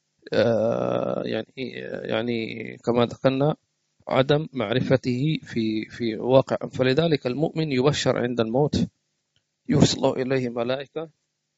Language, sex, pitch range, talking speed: English, male, 120-150 Hz, 100 wpm